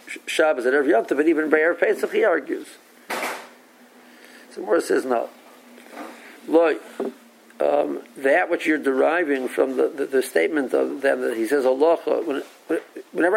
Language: English